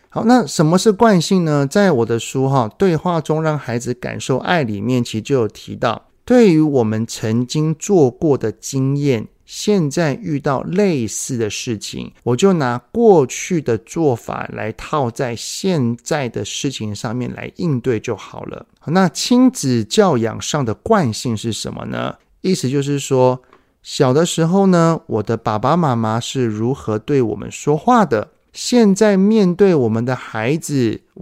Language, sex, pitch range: Chinese, male, 115-165 Hz